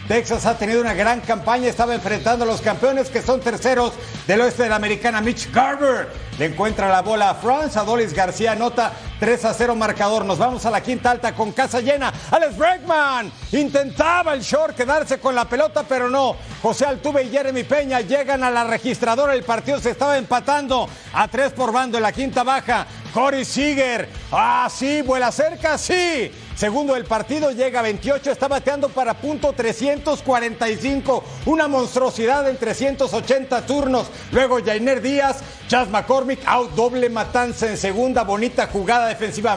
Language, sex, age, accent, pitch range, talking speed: Spanish, male, 50-69, Mexican, 235-275 Hz, 170 wpm